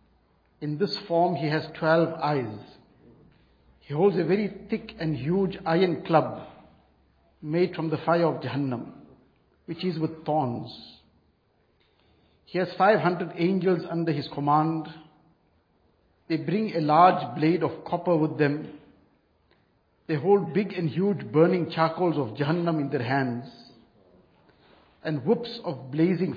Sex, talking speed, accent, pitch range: male, 130 wpm, Indian, 150-180 Hz